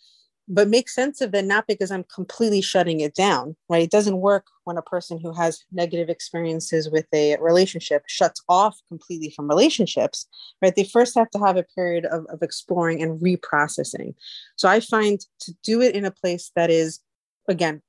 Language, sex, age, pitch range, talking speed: English, female, 30-49, 165-200 Hz, 190 wpm